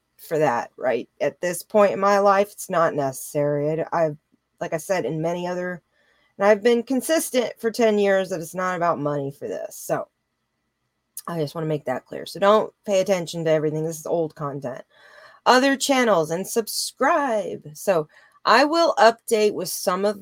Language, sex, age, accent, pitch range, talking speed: English, female, 30-49, American, 165-230 Hz, 185 wpm